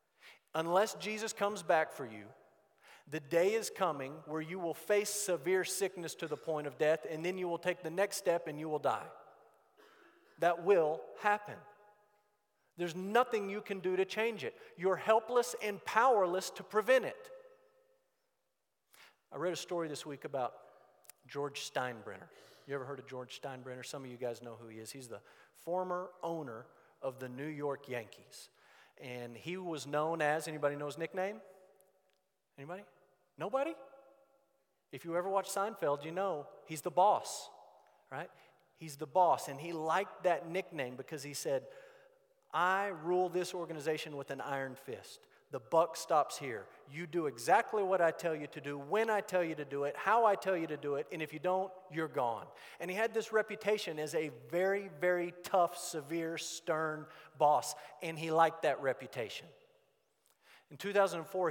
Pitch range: 145-195 Hz